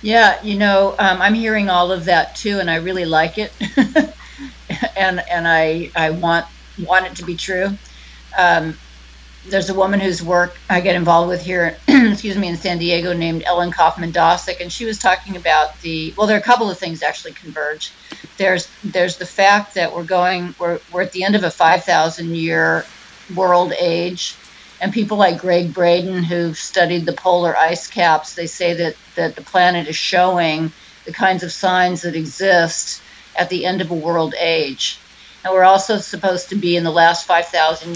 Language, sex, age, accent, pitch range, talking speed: English, female, 50-69, American, 165-185 Hz, 195 wpm